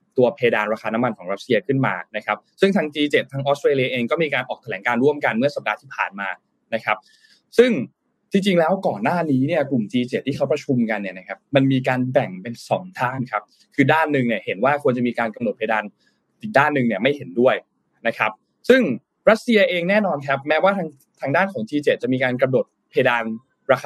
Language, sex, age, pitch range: Thai, male, 20-39, 115-160 Hz